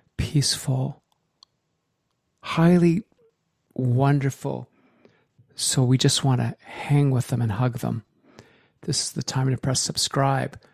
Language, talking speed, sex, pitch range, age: English, 115 wpm, male, 125-150 Hz, 50-69